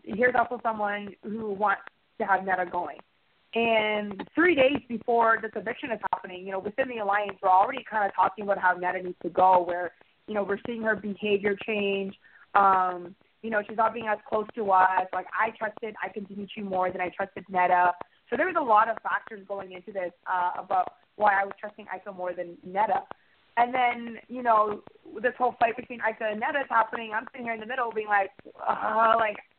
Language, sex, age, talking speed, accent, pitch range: English, female, 20-39, 215 wpm, American, 195-235 Hz